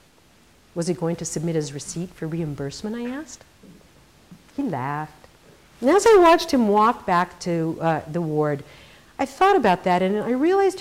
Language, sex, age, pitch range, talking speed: English, female, 50-69, 155-245 Hz, 170 wpm